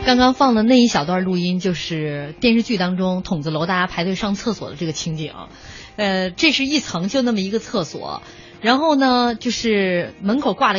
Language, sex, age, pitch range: Chinese, female, 20-39, 190-275 Hz